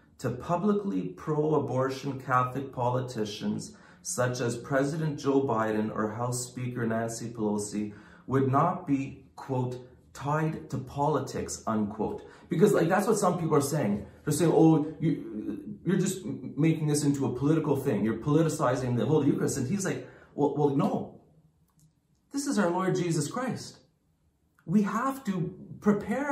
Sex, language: male, English